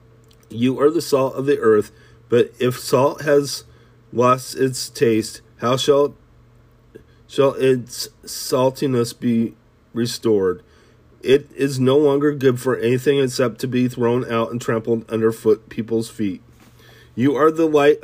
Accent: American